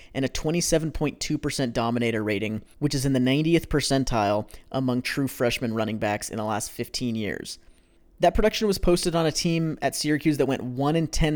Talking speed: 185 wpm